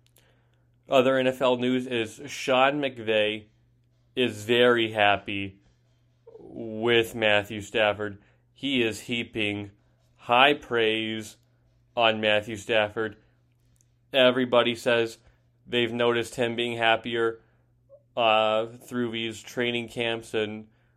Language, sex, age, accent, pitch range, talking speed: English, male, 20-39, American, 115-125 Hz, 95 wpm